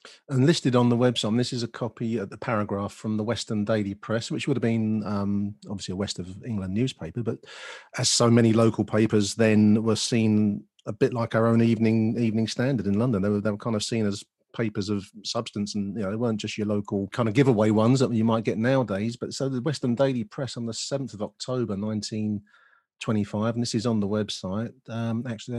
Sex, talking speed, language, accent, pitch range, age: male, 230 wpm, English, British, 105-120 Hz, 40-59